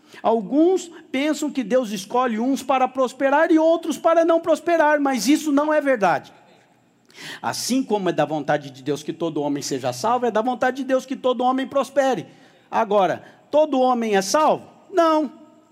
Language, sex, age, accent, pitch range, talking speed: English, male, 50-69, Brazilian, 190-270 Hz, 170 wpm